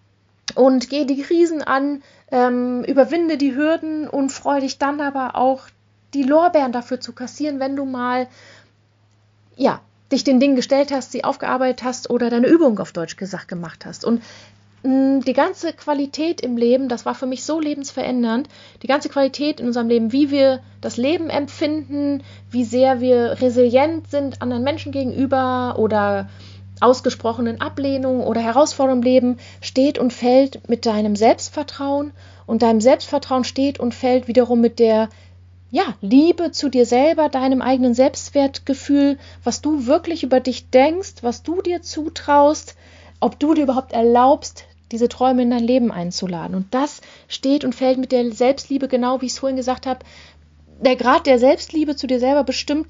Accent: German